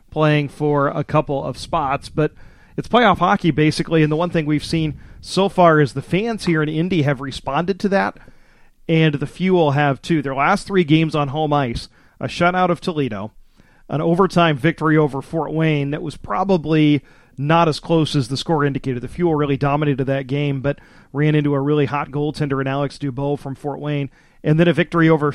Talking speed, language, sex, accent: 200 wpm, English, male, American